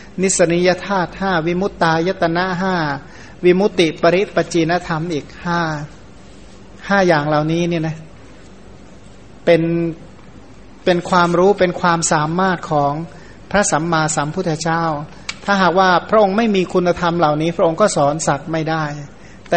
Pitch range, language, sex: 155-185 Hz, Thai, male